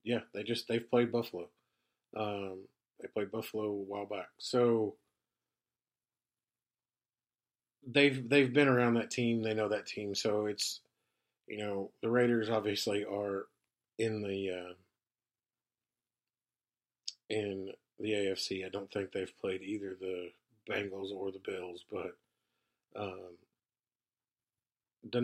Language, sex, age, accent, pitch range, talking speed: English, male, 40-59, American, 100-120 Hz, 125 wpm